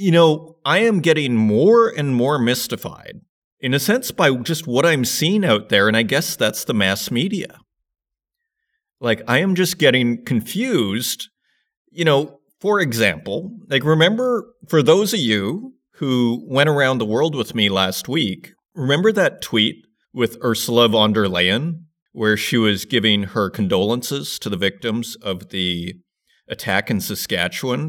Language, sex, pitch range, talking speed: English, male, 110-170 Hz, 155 wpm